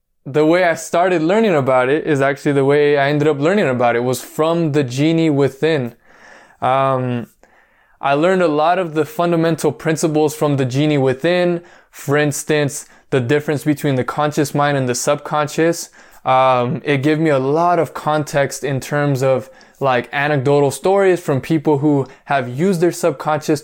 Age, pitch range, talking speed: 20-39, 140-160 Hz, 170 wpm